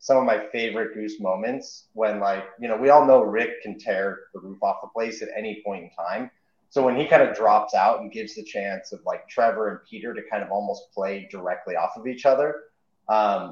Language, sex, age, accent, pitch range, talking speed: English, male, 30-49, American, 110-145 Hz, 235 wpm